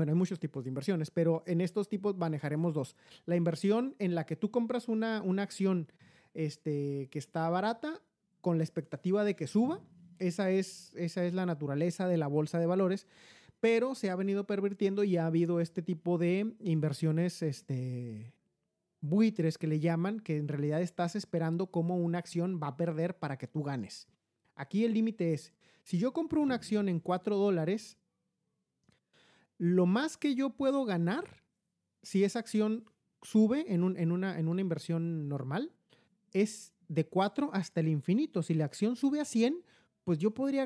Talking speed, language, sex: 175 wpm, Spanish, male